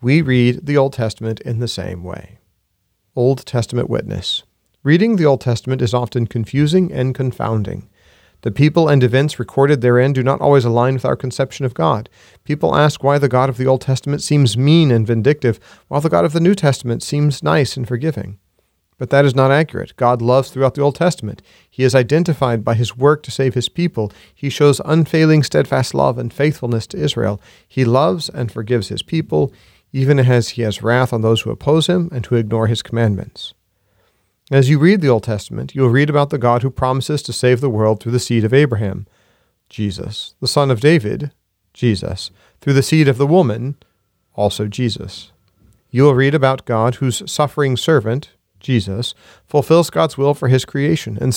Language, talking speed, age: English, 190 wpm, 40-59